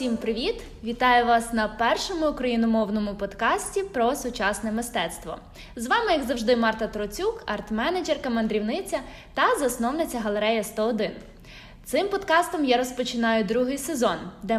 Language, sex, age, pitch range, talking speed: Ukrainian, female, 20-39, 215-315 Hz, 125 wpm